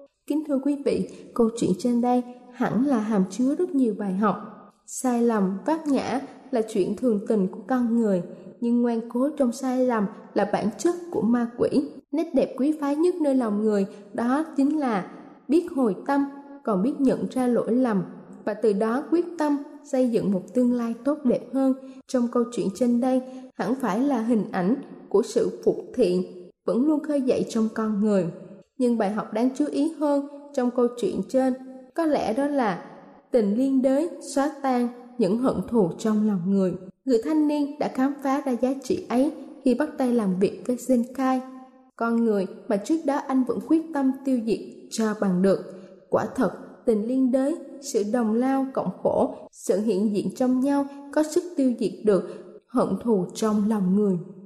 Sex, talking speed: female, 195 wpm